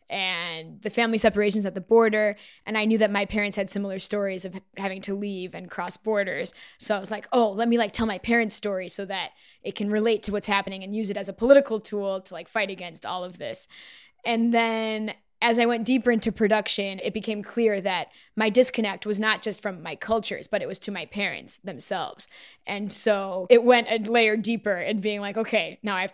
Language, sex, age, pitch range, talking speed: English, female, 20-39, 200-230 Hz, 225 wpm